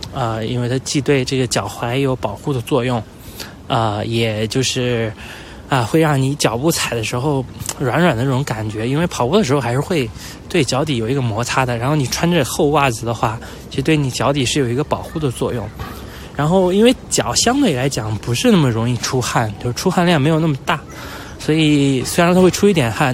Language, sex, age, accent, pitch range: Chinese, male, 20-39, native, 115-150 Hz